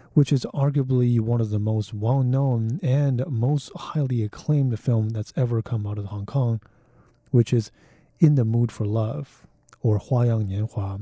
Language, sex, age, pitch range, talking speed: English, male, 30-49, 110-135 Hz, 165 wpm